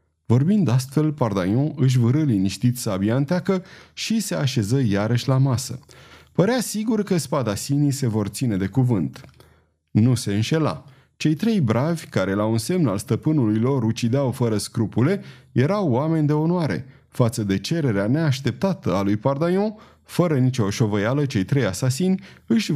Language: Romanian